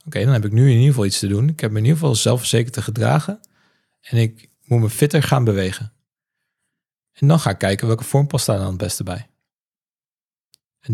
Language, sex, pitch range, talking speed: Dutch, male, 110-140 Hz, 230 wpm